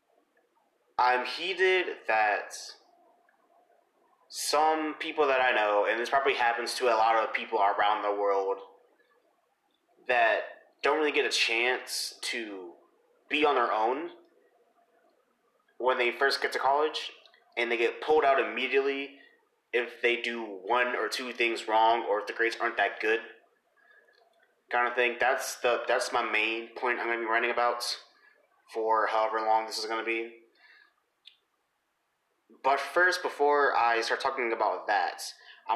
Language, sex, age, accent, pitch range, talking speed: English, male, 30-49, American, 115-185 Hz, 150 wpm